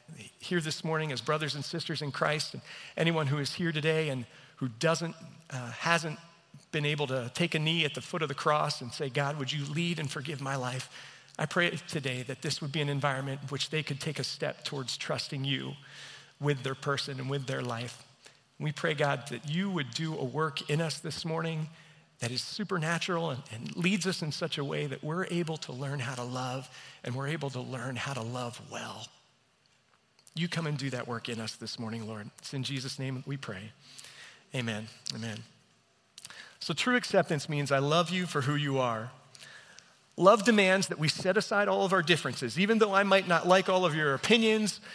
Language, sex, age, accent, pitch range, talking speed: English, male, 40-59, American, 135-170 Hz, 210 wpm